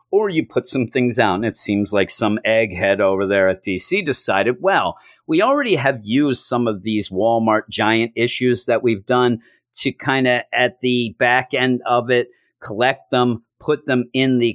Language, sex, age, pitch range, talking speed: English, male, 40-59, 110-140 Hz, 190 wpm